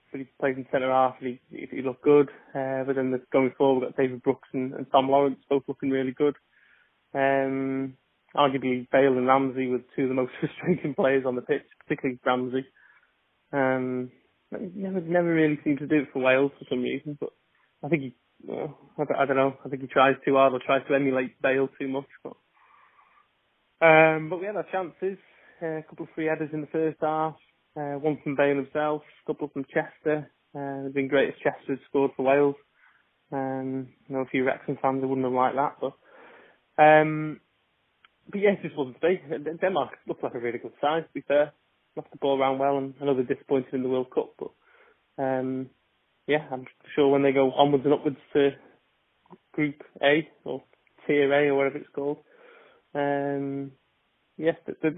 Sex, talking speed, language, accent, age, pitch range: male, 195 wpm, English, British, 20-39, 135-155 Hz